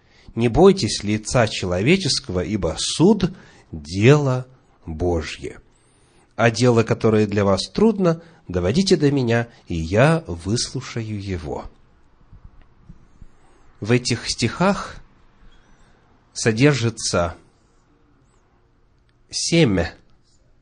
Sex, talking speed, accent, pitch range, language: male, 80 wpm, native, 105-130 Hz, Russian